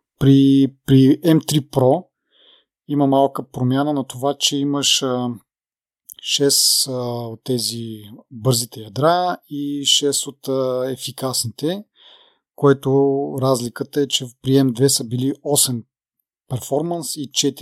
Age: 30-49